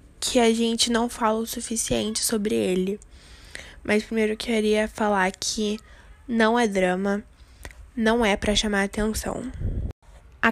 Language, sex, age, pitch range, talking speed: Portuguese, female, 10-29, 210-235 Hz, 135 wpm